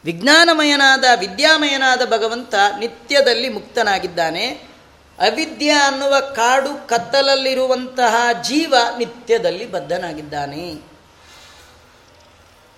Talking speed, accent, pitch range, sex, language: 55 wpm, native, 215-275 Hz, female, Kannada